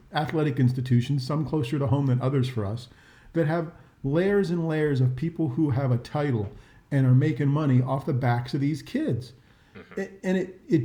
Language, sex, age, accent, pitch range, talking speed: English, male, 40-59, American, 125-155 Hz, 190 wpm